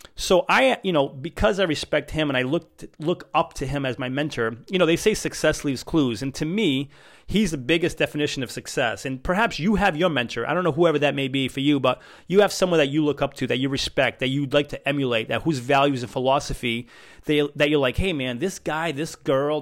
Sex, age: male, 30-49